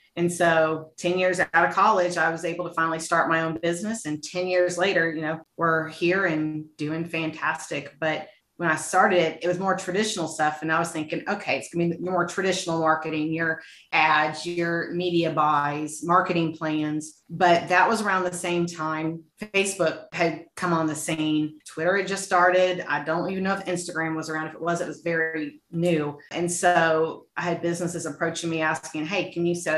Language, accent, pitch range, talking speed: English, American, 155-175 Hz, 200 wpm